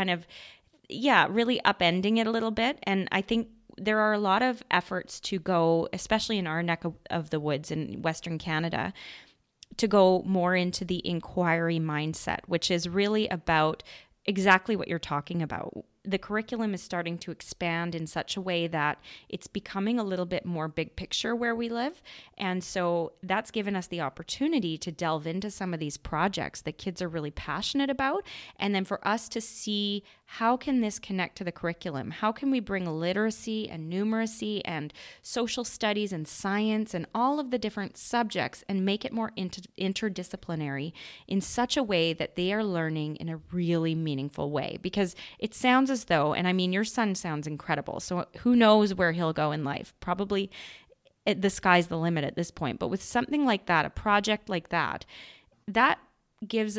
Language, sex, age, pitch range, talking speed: English, female, 20-39, 165-215 Hz, 185 wpm